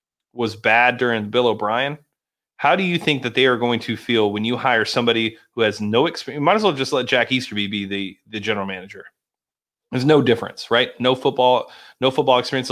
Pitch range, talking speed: 105-125 Hz, 210 wpm